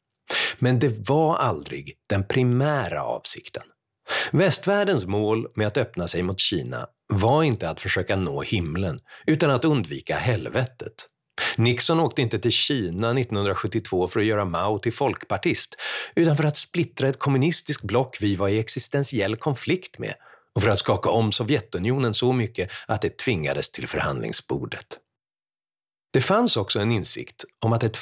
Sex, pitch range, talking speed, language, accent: male, 100-135 Hz, 150 wpm, Swedish, native